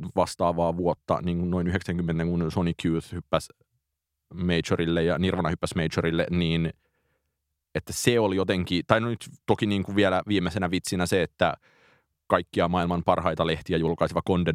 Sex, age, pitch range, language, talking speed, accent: male, 30-49, 85-95 Hz, Finnish, 155 wpm, native